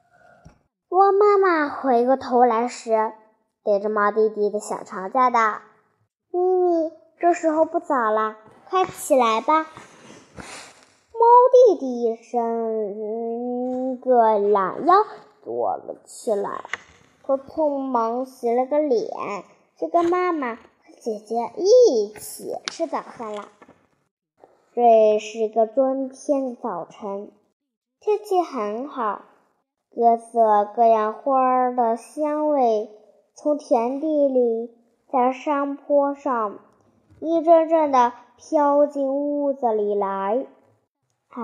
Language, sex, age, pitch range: Chinese, male, 10-29, 225-315 Hz